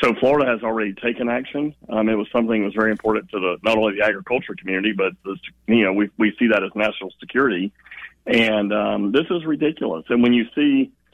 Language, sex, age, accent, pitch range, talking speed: English, male, 40-59, American, 100-120 Hz, 220 wpm